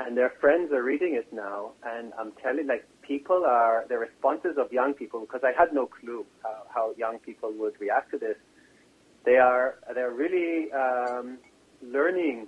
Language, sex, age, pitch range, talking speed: English, male, 40-59, 120-155 Hz, 180 wpm